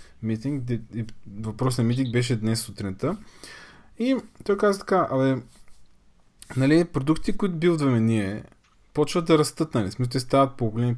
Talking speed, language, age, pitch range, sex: 150 wpm, Bulgarian, 20-39, 120-165 Hz, male